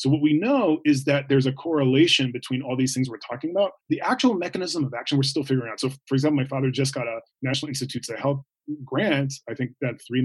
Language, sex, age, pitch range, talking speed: English, male, 30-49, 130-155 Hz, 245 wpm